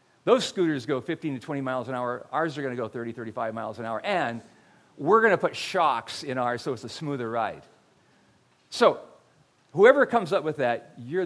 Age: 50-69